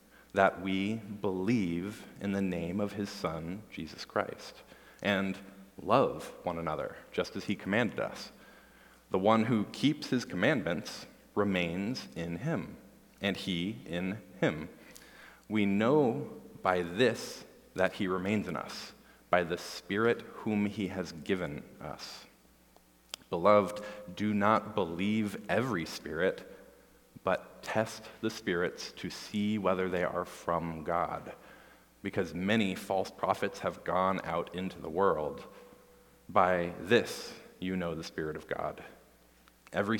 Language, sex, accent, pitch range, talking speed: English, male, American, 90-105 Hz, 130 wpm